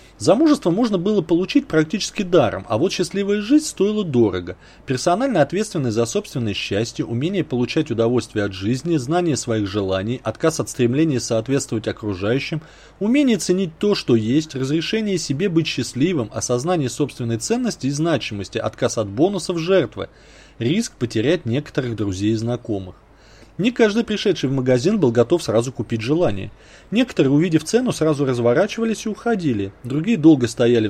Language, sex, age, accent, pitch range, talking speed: Russian, male, 30-49, native, 110-180 Hz, 145 wpm